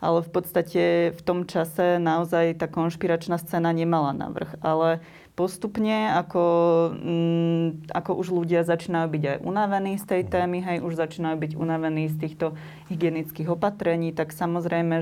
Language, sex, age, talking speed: Slovak, female, 20-39, 150 wpm